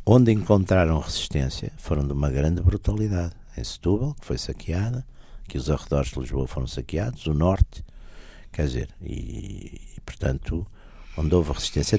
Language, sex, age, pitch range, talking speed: Portuguese, male, 60-79, 65-90 Hz, 150 wpm